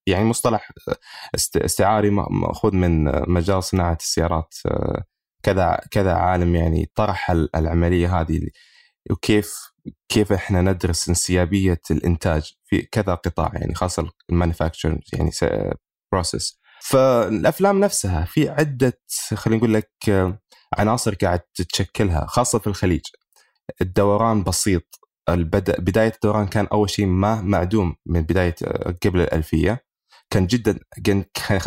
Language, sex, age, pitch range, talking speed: Arabic, male, 20-39, 85-105 Hz, 110 wpm